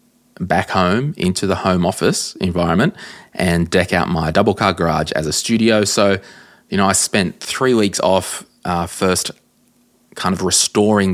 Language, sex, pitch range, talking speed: English, male, 85-95 Hz, 160 wpm